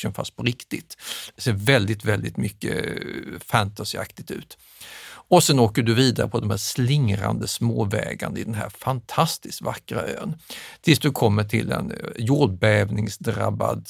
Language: Swedish